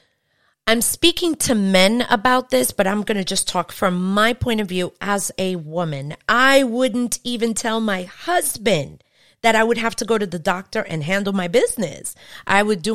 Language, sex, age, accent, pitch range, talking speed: English, female, 30-49, American, 165-225 Hz, 195 wpm